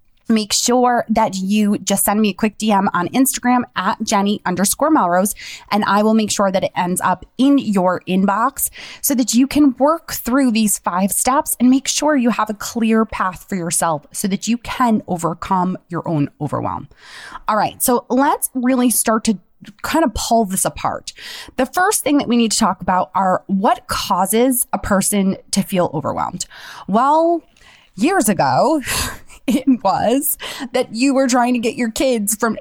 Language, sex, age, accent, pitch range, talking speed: English, female, 20-39, American, 190-245 Hz, 180 wpm